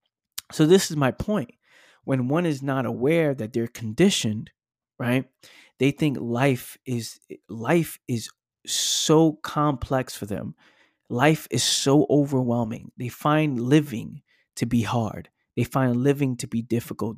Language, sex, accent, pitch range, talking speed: English, male, American, 115-140 Hz, 140 wpm